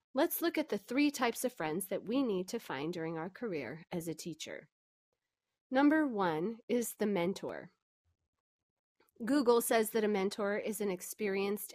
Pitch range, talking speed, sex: 185-255 Hz, 165 wpm, female